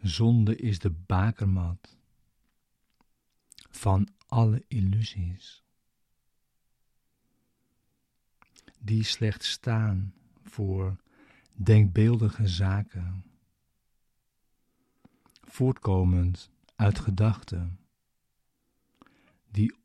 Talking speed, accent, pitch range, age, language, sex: 50 wpm, Dutch, 95-115 Hz, 60-79, Dutch, male